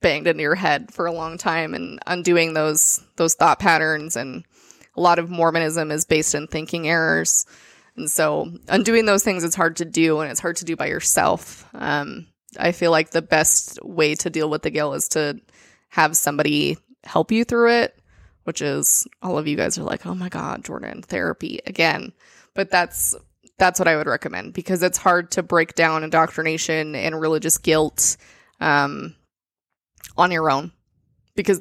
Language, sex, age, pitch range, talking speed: English, female, 20-39, 155-175 Hz, 180 wpm